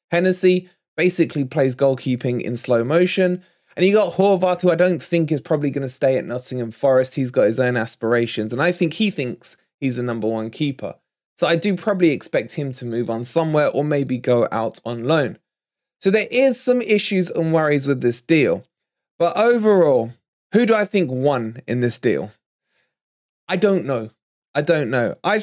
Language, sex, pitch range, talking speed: English, male, 130-185 Hz, 190 wpm